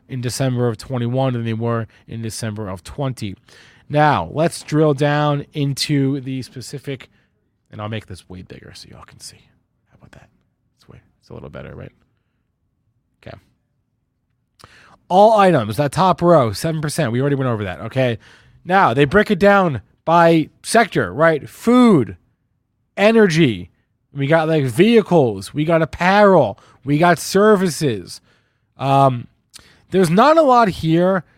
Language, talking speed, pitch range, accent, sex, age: English, 145 wpm, 120-160 Hz, American, male, 30-49